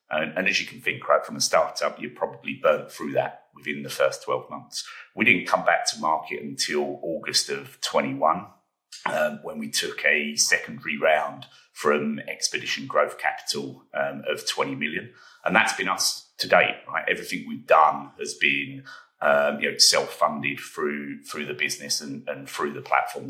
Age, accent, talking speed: 30-49, British, 180 wpm